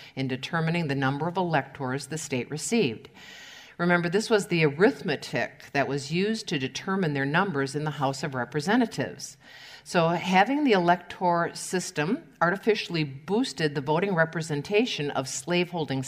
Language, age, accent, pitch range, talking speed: English, 50-69, American, 150-195 Hz, 140 wpm